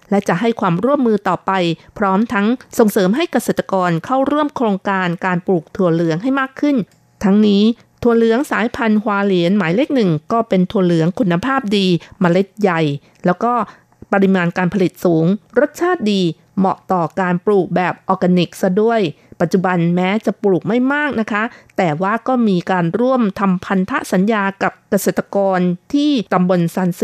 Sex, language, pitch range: female, Thai, 180-230 Hz